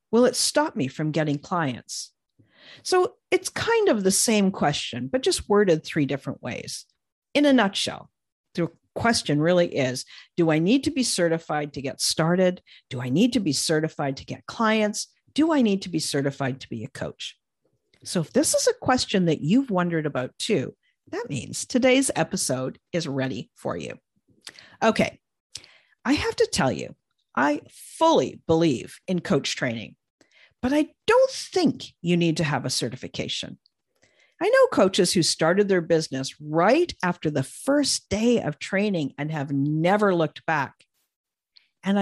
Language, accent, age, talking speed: English, American, 50-69, 165 wpm